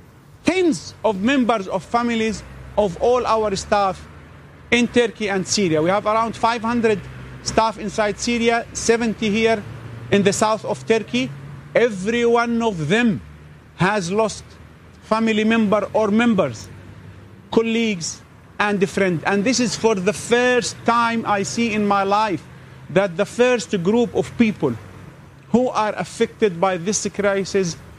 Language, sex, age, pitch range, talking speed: English, male, 40-59, 185-235 Hz, 135 wpm